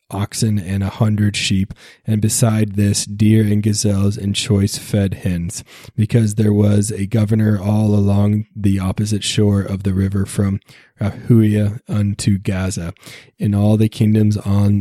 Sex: male